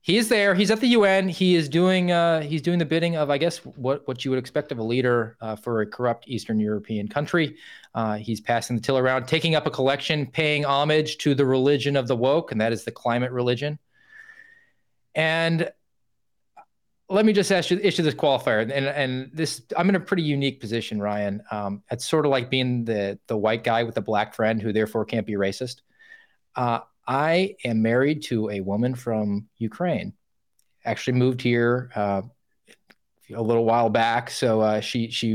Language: English